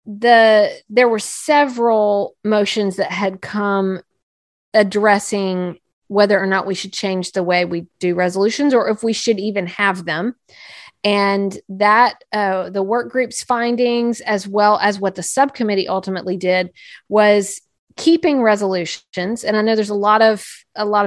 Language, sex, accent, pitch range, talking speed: English, female, American, 190-220 Hz, 155 wpm